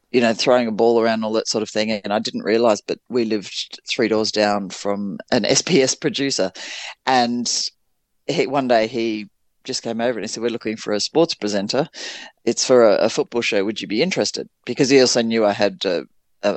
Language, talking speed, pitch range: Dutch, 215 wpm, 105-130 Hz